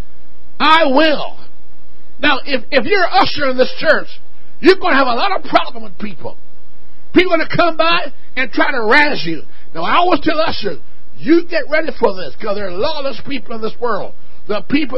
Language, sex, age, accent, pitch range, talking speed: English, male, 50-69, American, 210-305 Hz, 205 wpm